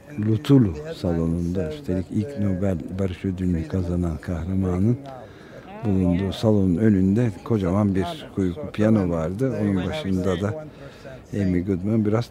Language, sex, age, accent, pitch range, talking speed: Turkish, male, 60-79, native, 95-115 Hz, 110 wpm